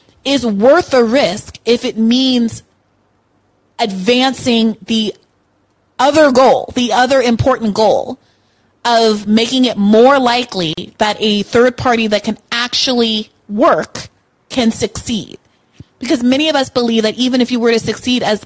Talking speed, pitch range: 140 wpm, 195-245 Hz